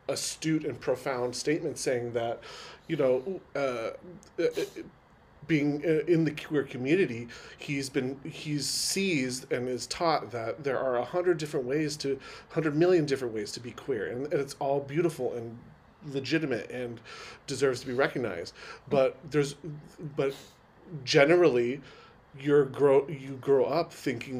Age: 30-49